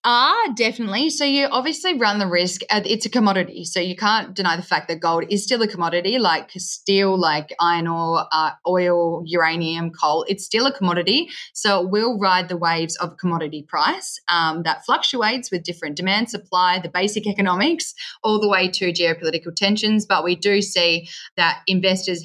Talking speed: 180 wpm